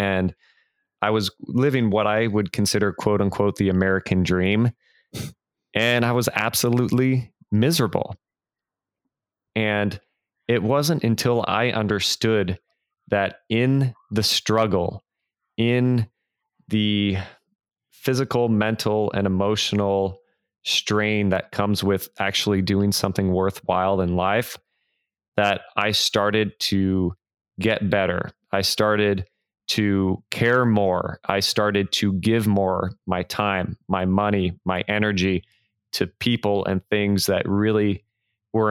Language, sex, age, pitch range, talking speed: English, male, 20-39, 95-110 Hz, 115 wpm